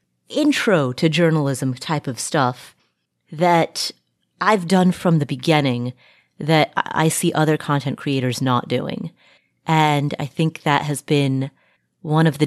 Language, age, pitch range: English, 30-49, 130-170 Hz